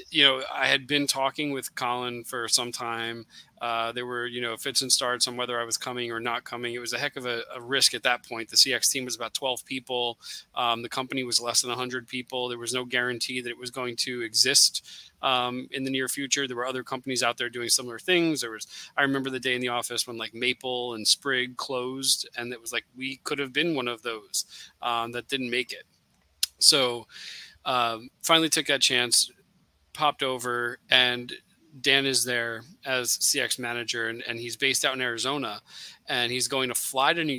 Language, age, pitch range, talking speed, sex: English, 20-39, 120-135 Hz, 220 wpm, male